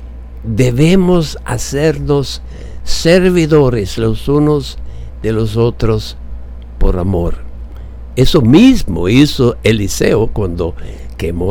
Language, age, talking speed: English, 60-79, 85 wpm